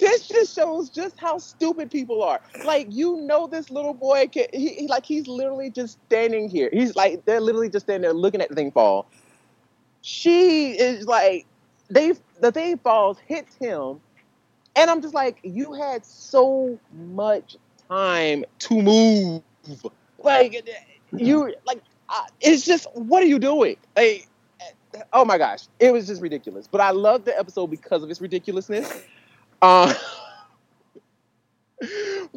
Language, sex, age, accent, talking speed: English, male, 30-49, American, 150 wpm